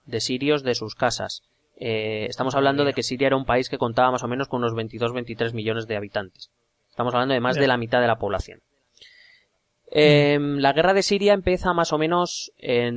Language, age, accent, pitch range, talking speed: Spanish, 20-39, Spanish, 120-150 Hz, 210 wpm